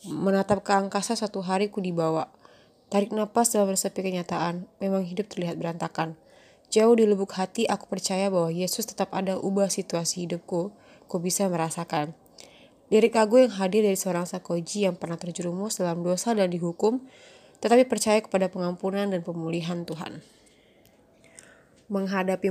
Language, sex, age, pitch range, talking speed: Indonesian, female, 20-39, 175-210 Hz, 145 wpm